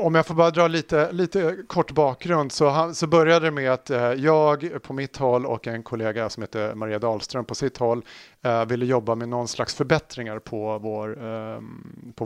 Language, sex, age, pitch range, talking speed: Swedish, male, 30-49, 115-150 Hz, 200 wpm